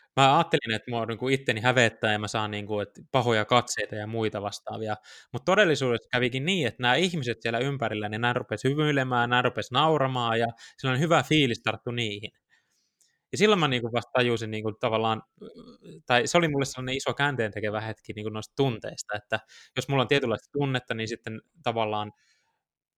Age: 20-39